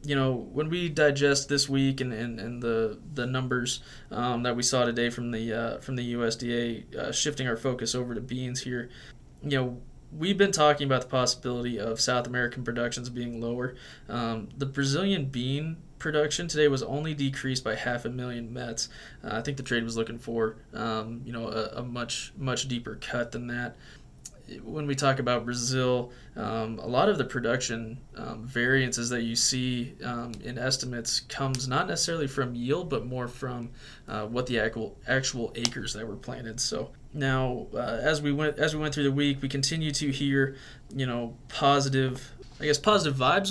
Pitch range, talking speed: 120-140 Hz, 190 wpm